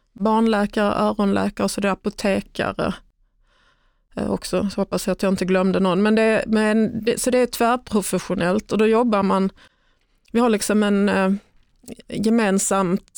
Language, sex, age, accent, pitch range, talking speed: Swedish, female, 30-49, native, 185-215 Hz, 155 wpm